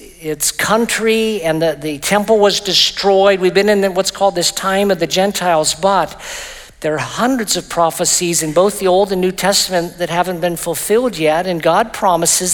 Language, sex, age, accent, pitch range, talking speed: English, male, 50-69, American, 160-190 Hz, 185 wpm